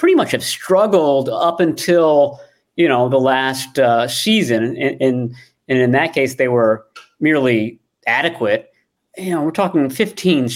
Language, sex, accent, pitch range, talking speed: English, male, American, 125-170 Hz, 150 wpm